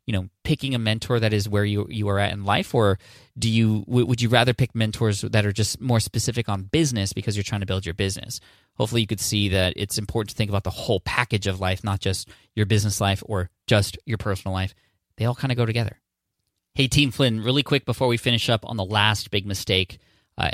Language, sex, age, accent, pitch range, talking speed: English, male, 20-39, American, 100-120 Hz, 240 wpm